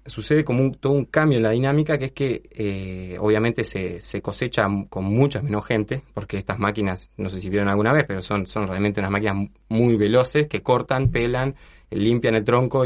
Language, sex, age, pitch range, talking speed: Spanish, male, 20-39, 100-135 Hz, 205 wpm